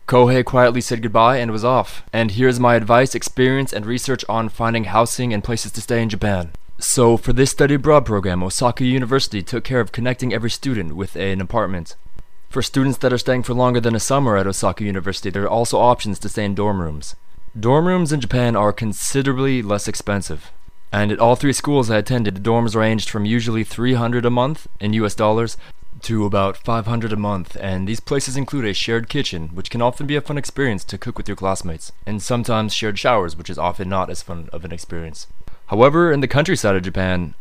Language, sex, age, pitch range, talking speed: English, male, 20-39, 100-125 Hz, 210 wpm